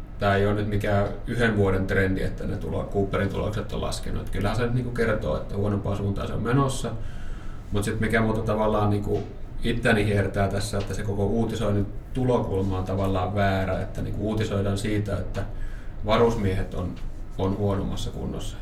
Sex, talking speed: male, 175 wpm